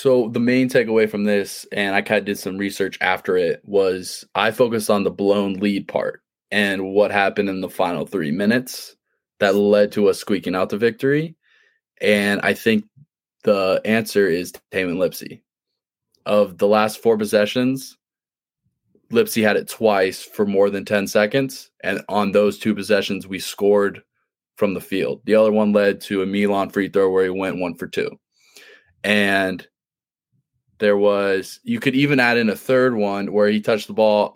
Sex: male